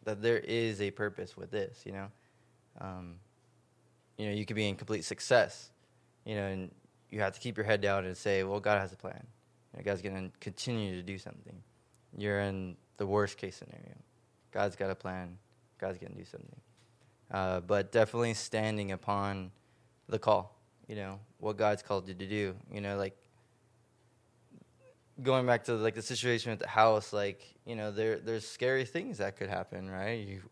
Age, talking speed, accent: 20-39, 195 wpm, American